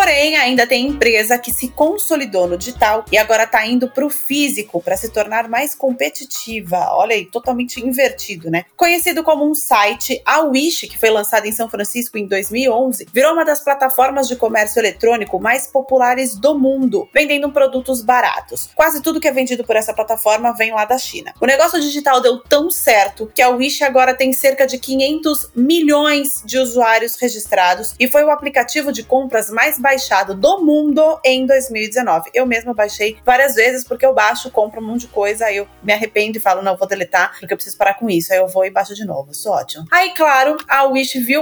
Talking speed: 200 wpm